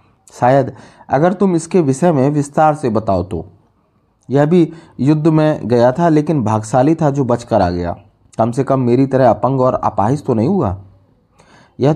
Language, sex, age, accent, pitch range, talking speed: Hindi, male, 30-49, native, 110-145 Hz, 175 wpm